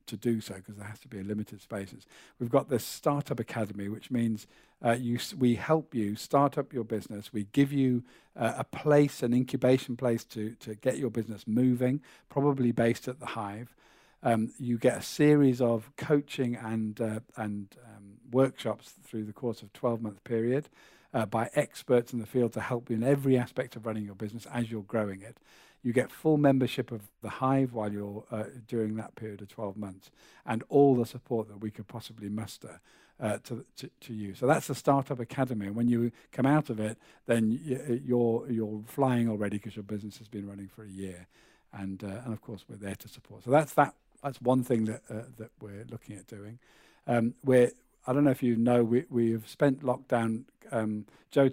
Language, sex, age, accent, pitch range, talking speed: English, male, 50-69, British, 110-130 Hz, 210 wpm